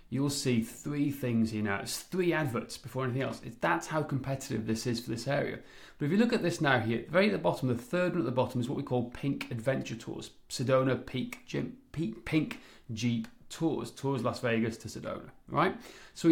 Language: English